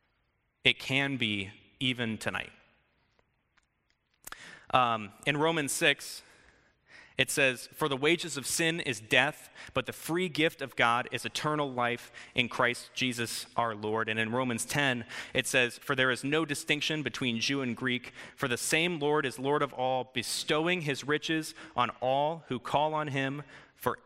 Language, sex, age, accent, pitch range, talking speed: English, male, 30-49, American, 110-140 Hz, 160 wpm